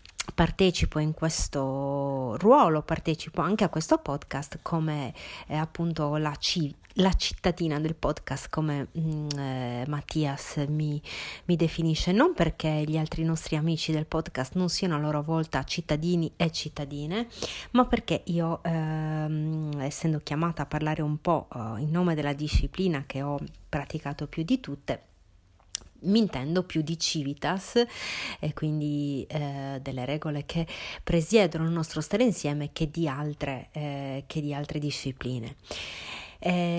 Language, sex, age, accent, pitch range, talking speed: Italian, female, 30-49, native, 145-170 Hz, 130 wpm